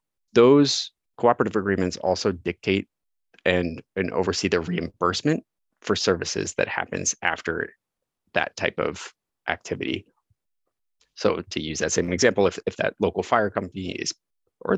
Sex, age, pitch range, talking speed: male, 30-49, 85-110 Hz, 135 wpm